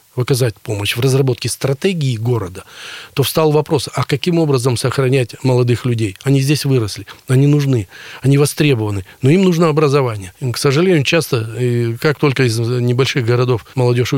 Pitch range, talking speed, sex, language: 120-145 Hz, 150 wpm, male, Russian